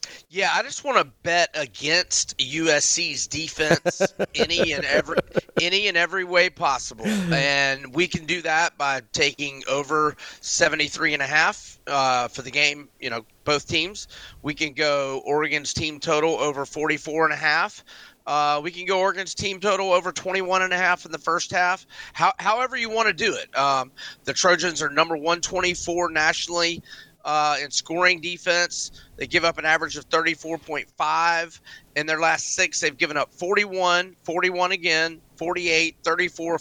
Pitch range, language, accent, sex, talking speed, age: 145-175 Hz, English, American, male, 150 wpm, 30-49